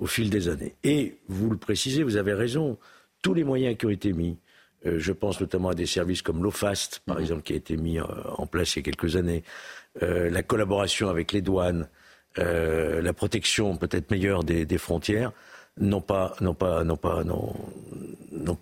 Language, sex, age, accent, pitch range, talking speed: French, male, 60-79, French, 95-130 Hz, 195 wpm